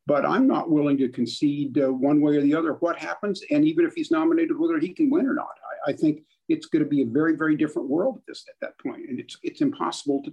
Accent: American